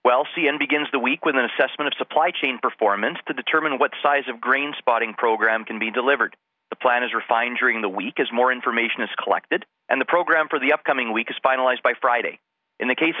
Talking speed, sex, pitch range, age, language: 225 wpm, male, 115-145 Hz, 30-49, English